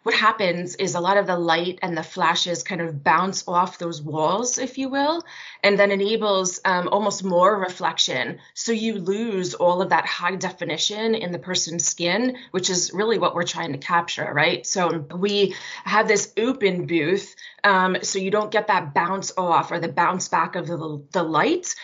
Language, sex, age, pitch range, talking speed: English, female, 20-39, 165-195 Hz, 190 wpm